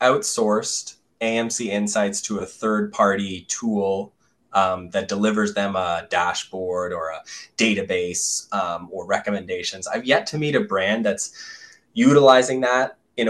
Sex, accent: male, American